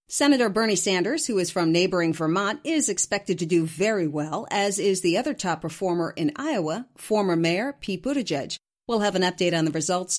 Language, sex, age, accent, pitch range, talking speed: English, female, 40-59, American, 170-245 Hz, 195 wpm